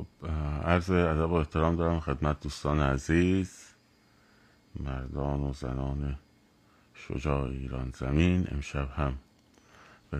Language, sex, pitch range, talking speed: Persian, male, 70-80 Hz, 100 wpm